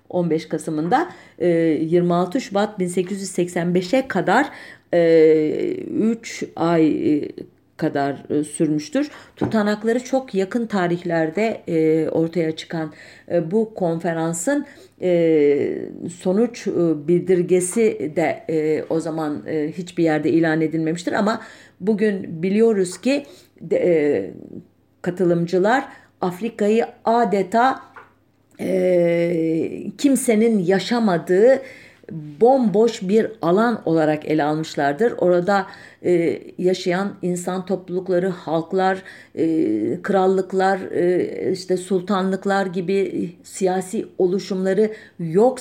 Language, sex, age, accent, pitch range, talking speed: German, female, 50-69, Turkish, 165-220 Hz, 75 wpm